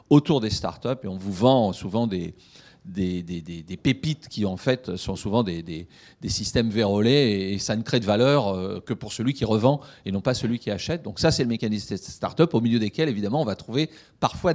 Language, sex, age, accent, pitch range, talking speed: French, male, 40-59, French, 105-135 Hz, 230 wpm